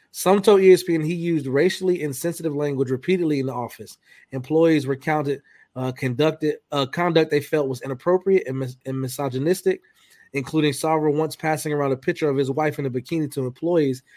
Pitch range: 135-165 Hz